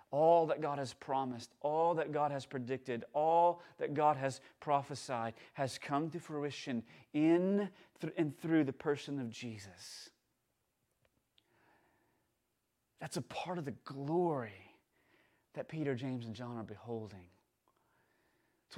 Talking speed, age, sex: 130 wpm, 30-49, male